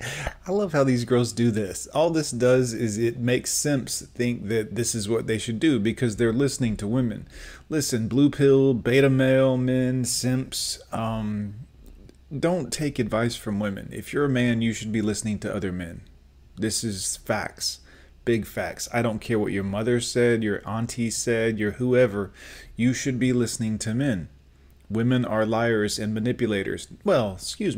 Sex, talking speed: male, 175 wpm